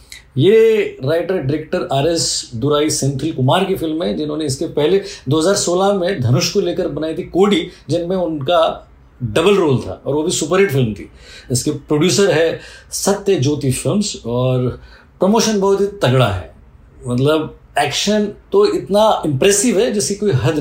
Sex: male